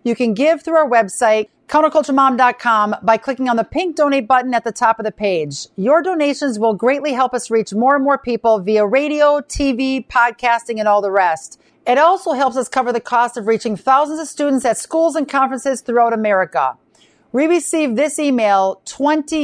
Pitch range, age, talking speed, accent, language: 220-275 Hz, 50-69, 190 wpm, American, English